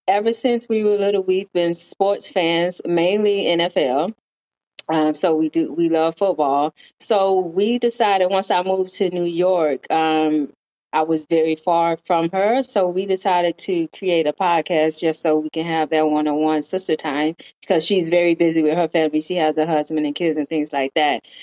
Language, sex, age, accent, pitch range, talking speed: English, female, 20-39, American, 155-190 Hz, 190 wpm